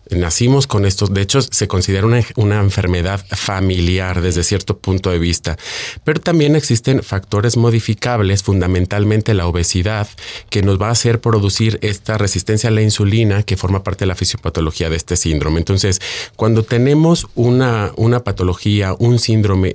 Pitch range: 90-110 Hz